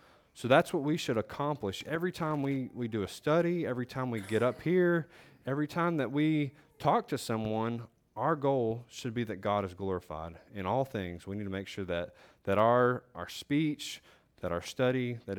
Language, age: English, 30-49